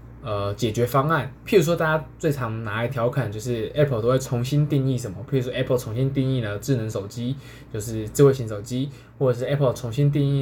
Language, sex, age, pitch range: Chinese, male, 20-39, 110-135 Hz